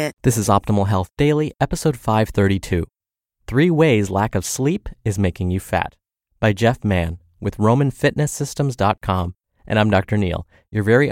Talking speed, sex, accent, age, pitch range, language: 145 wpm, male, American, 30-49, 100-135 Hz, English